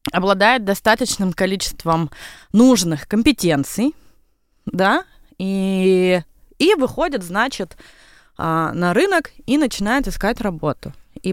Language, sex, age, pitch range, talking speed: Russian, female, 20-39, 165-225 Hz, 90 wpm